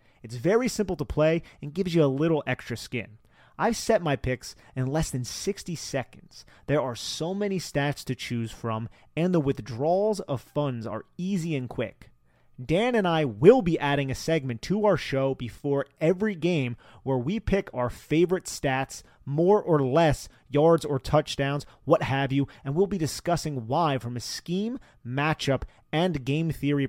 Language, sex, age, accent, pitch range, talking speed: English, male, 30-49, American, 120-160 Hz, 175 wpm